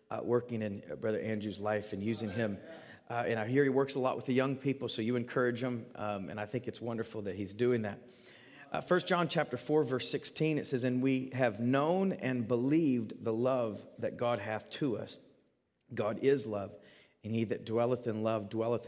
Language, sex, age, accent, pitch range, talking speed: English, male, 40-59, American, 115-135 Hz, 215 wpm